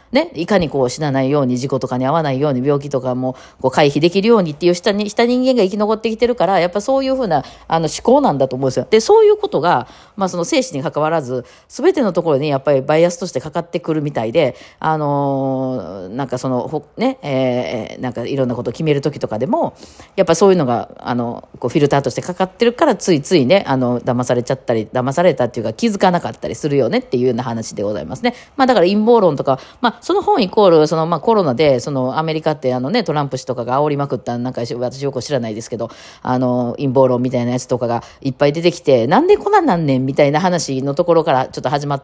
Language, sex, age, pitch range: Japanese, female, 40-59, 130-190 Hz